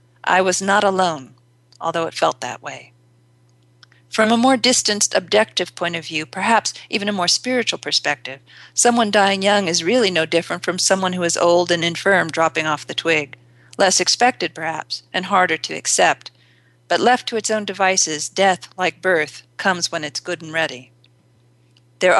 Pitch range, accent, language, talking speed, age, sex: 150-185 Hz, American, English, 175 wpm, 50-69, female